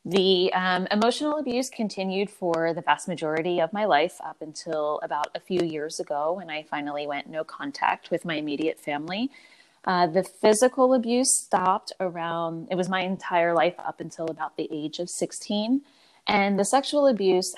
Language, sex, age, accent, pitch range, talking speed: English, female, 20-39, American, 160-200 Hz, 175 wpm